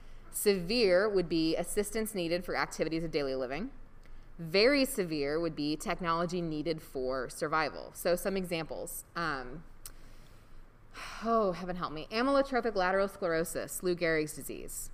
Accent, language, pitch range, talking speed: American, English, 145-185 Hz, 130 wpm